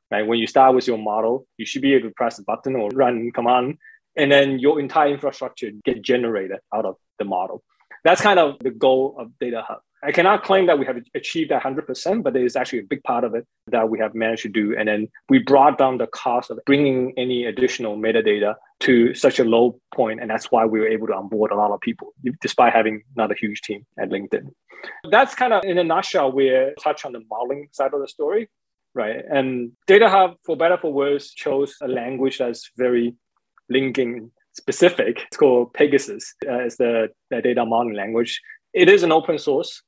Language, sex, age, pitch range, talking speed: English, male, 20-39, 115-160 Hz, 215 wpm